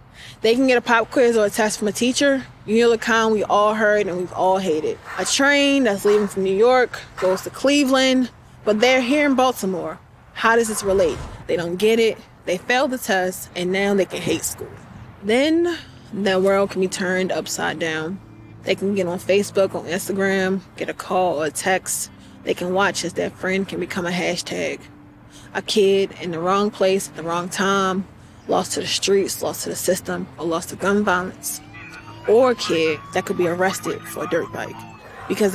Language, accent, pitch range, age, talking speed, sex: Spanish, American, 180-225 Hz, 20-39, 205 wpm, female